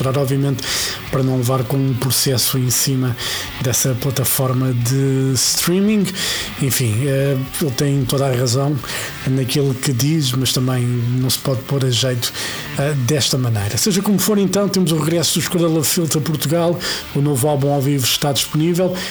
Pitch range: 130-160 Hz